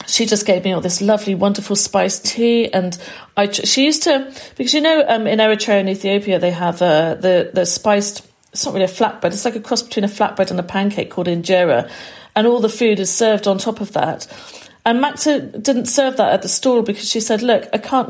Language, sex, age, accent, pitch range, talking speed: English, female, 40-59, British, 185-225 Hz, 230 wpm